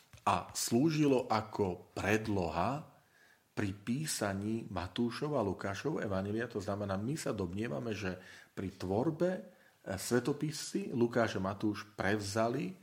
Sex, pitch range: male, 95-125 Hz